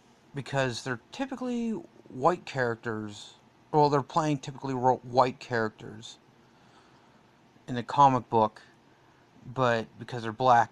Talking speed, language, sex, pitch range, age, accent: 105 wpm, English, male, 115-135 Hz, 30-49, American